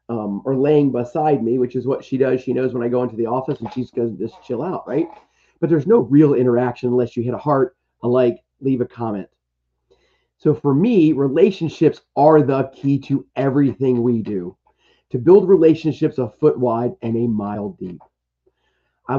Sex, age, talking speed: male, 40-59, 195 wpm